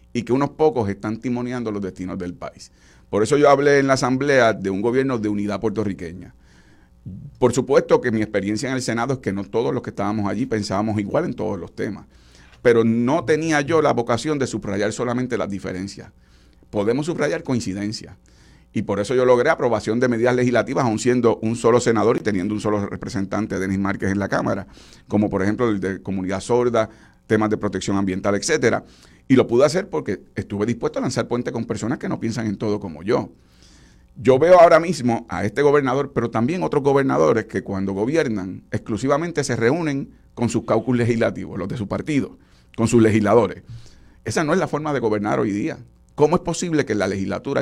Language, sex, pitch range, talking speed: Spanish, male, 100-125 Hz, 200 wpm